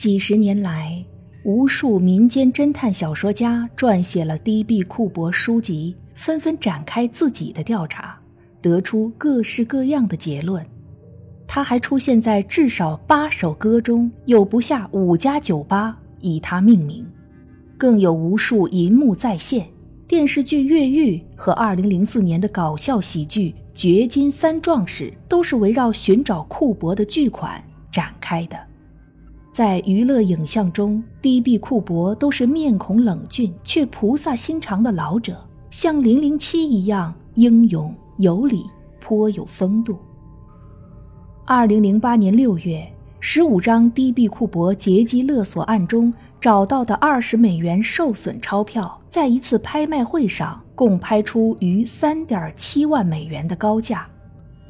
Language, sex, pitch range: Chinese, female, 185-250 Hz